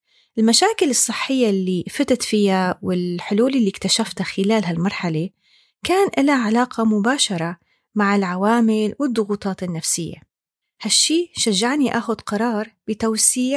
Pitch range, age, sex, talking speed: 190-255 Hz, 30-49, female, 100 wpm